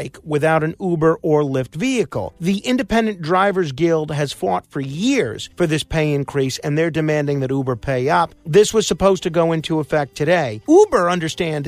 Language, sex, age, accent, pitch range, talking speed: English, male, 40-59, American, 155-200 Hz, 180 wpm